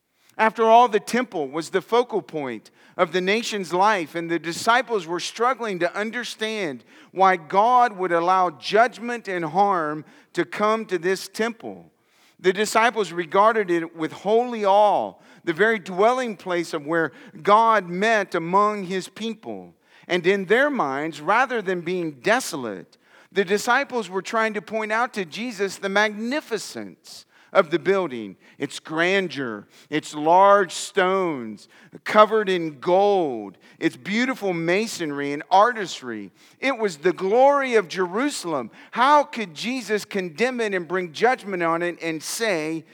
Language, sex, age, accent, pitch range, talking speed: English, male, 50-69, American, 160-215 Hz, 145 wpm